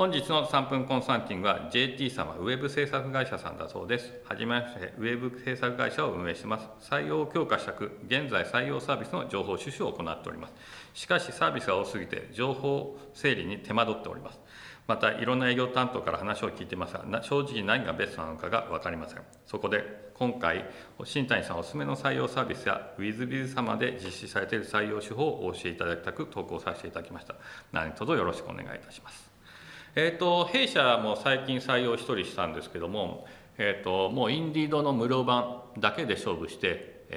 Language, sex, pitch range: Japanese, male, 100-130 Hz